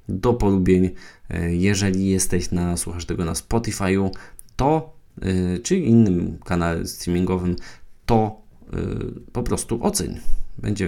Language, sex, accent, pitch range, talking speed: Polish, male, native, 90-115 Hz, 105 wpm